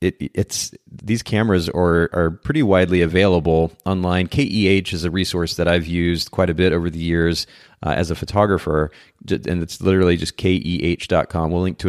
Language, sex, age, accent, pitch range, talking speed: English, male, 30-49, American, 85-95 Hz, 175 wpm